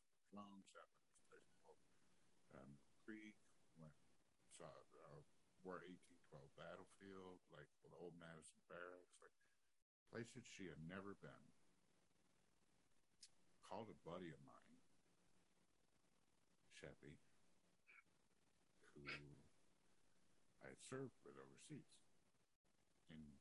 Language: English